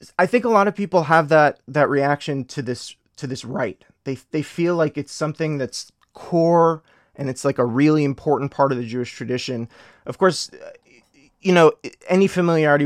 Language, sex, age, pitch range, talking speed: English, male, 30-49, 125-155 Hz, 185 wpm